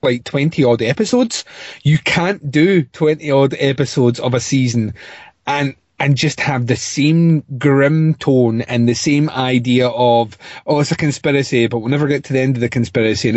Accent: British